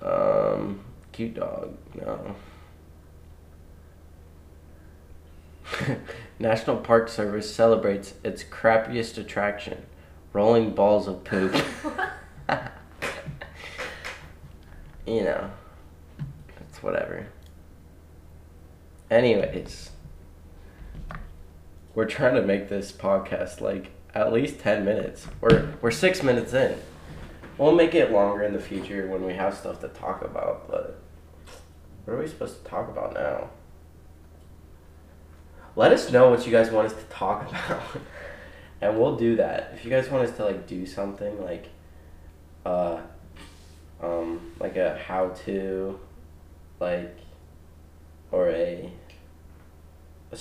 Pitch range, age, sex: 80-100 Hz, 20-39, male